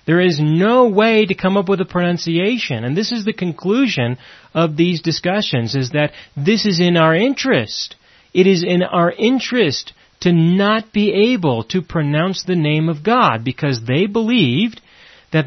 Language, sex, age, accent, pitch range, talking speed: English, male, 30-49, American, 145-205 Hz, 170 wpm